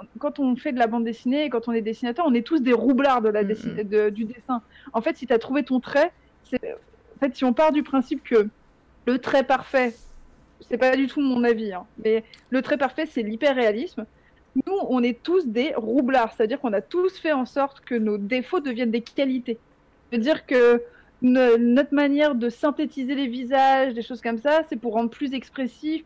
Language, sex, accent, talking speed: French, female, French, 215 wpm